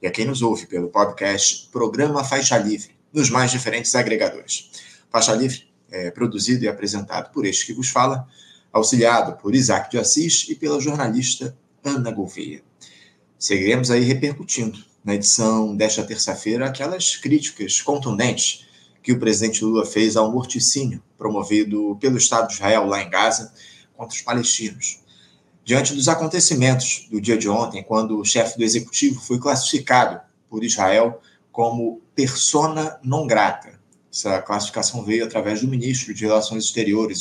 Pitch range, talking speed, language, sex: 105-130 Hz, 150 wpm, Portuguese, male